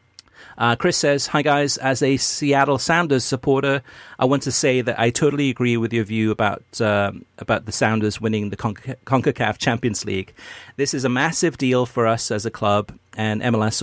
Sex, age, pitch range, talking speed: male, 40-59, 110-130 Hz, 195 wpm